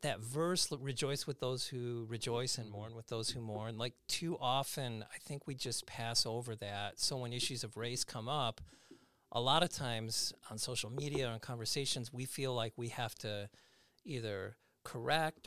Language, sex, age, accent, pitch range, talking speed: English, male, 40-59, American, 105-125 Hz, 180 wpm